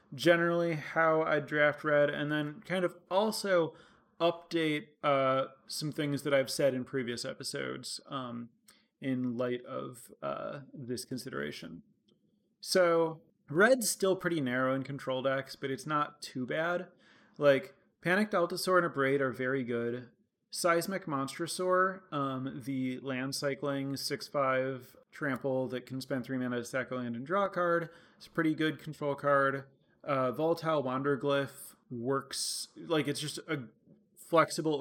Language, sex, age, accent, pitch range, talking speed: English, male, 30-49, American, 130-160 Hz, 145 wpm